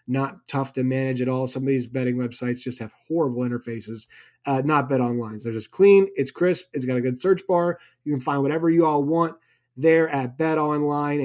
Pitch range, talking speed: 135-175 Hz, 215 wpm